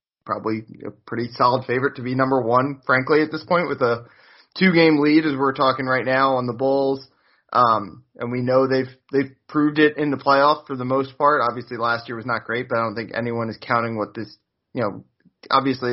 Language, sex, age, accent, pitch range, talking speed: English, male, 20-39, American, 115-145 Hz, 220 wpm